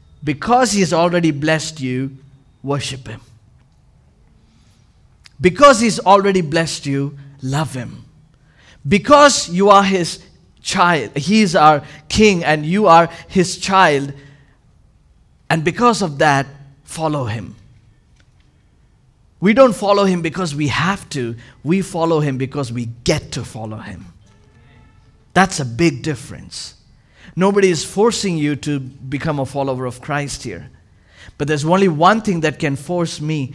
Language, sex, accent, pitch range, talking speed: English, male, Indian, 130-180 Hz, 135 wpm